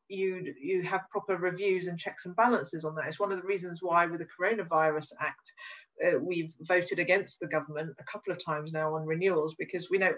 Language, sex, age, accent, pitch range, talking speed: English, female, 40-59, British, 160-185 Hz, 220 wpm